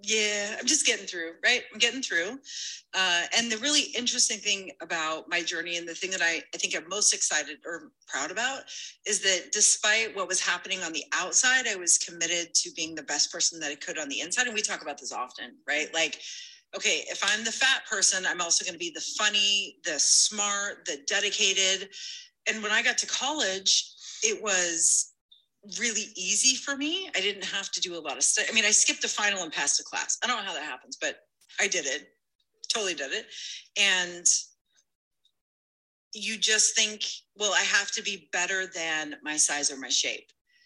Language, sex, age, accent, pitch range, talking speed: English, female, 30-49, American, 165-225 Hz, 205 wpm